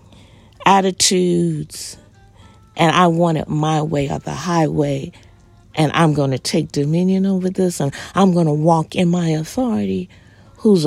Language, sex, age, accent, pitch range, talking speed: English, female, 40-59, American, 115-190 Hz, 150 wpm